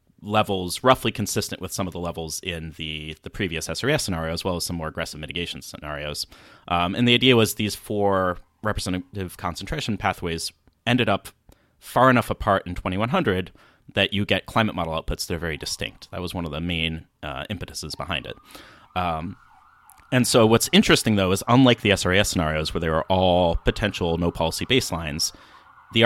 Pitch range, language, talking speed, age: 80-105 Hz, English, 180 wpm, 30-49